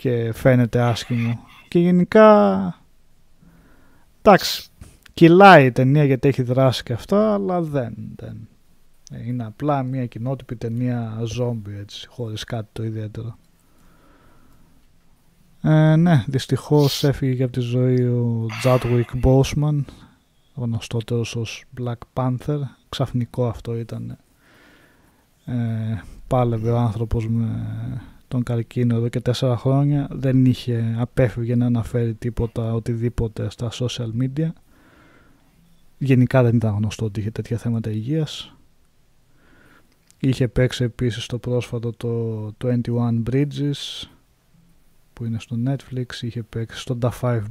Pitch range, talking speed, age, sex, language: 115-130 Hz, 115 wpm, 20-39, male, Greek